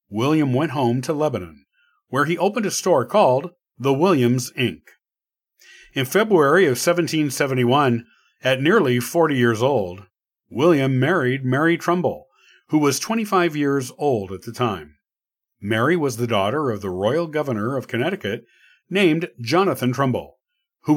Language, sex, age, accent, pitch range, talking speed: English, male, 50-69, American, 120-165 Hz, 145 wpm